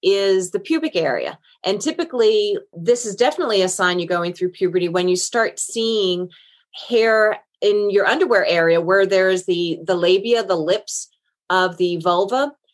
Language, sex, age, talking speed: English, female, 30-49, 160 wpm